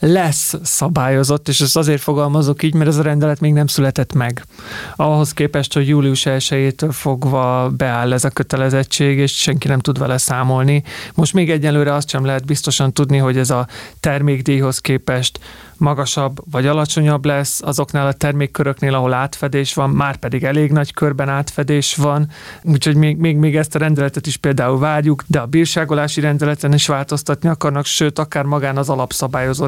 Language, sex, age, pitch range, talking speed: Hungarian, male, 30-49, 140-155 Hz, 170 wpm